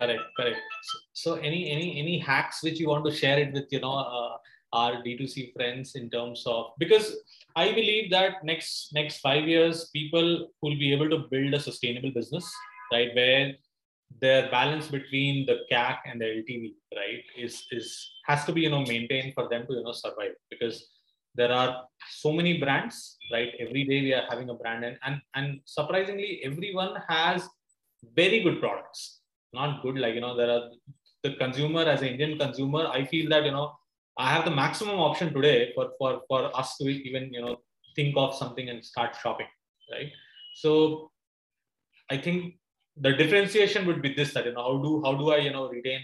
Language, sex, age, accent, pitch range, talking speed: English, male, 20-39, Indian, 125-160 Hz, 190 wpm